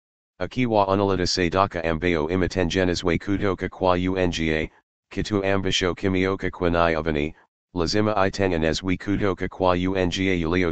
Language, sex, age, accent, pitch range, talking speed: English, male, 40-59, American, 85-95 Hz, 110 wpm